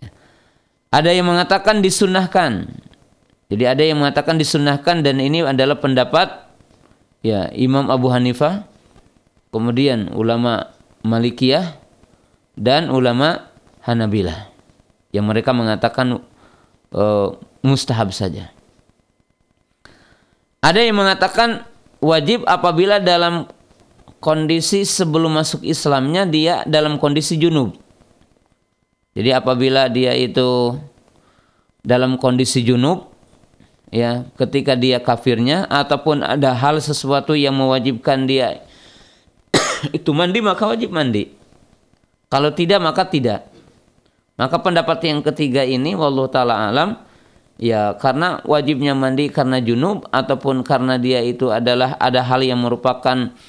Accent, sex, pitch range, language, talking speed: native, male, 120-155 Hz, Indonesian, 105 wpm